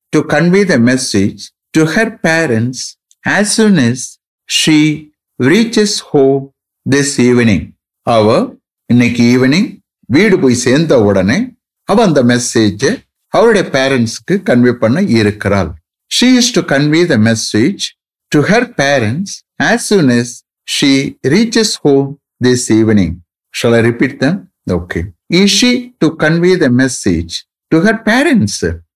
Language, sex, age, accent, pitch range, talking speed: English, male, 60-79, Indian, 110-185 Hz, 110 wpm